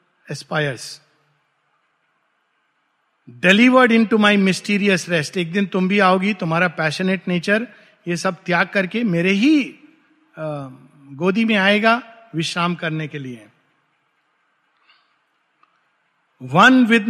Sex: male